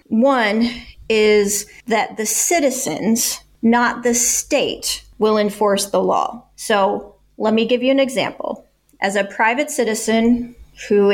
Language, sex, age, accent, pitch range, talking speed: English, female, 30-49, American, 205-245 Hz, 130 wpm